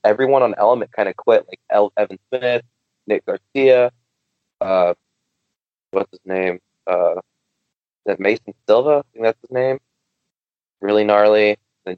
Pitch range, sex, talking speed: 100-120 Hz, male, 140 wpm